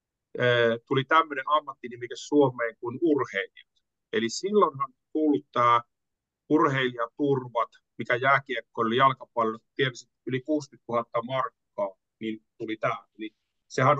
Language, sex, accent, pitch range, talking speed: Finnish, male, native, 115-150 Hz, 105 wpm